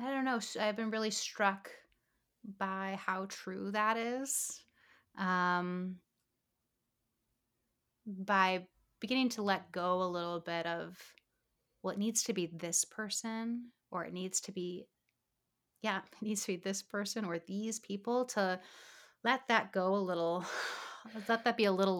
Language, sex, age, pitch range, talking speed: English, female, 30-49, 180-220 Hz, 150 wpm